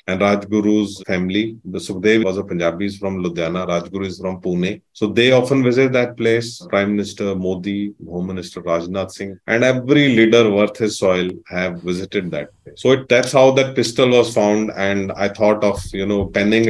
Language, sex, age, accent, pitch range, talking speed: English, male, 30-49, Indian, 100-115 Hz, 185 wpm